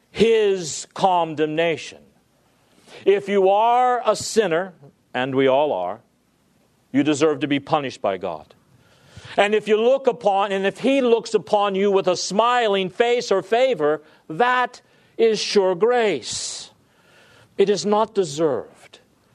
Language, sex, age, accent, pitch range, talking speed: English, male, 50-69, American, 175-225 Hz, 135 wpm